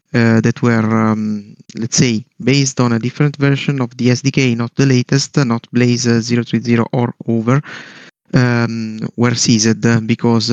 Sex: male